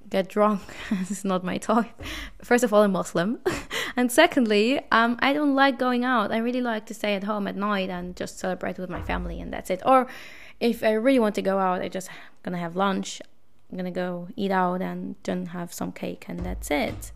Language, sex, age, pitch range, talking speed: English, female, 20-39, 195-255 Hz, 225 wpm